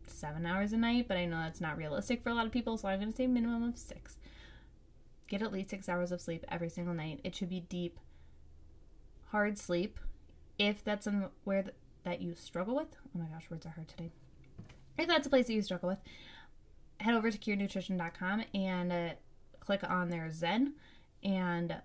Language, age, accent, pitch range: English, 20-39, American, 170-200 Hz